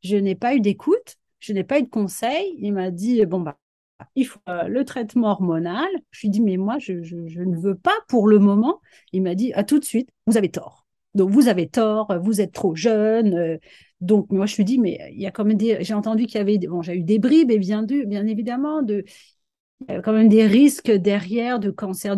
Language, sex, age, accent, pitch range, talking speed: French, female, 40-59, French, 185-235 Hz, 250 wpm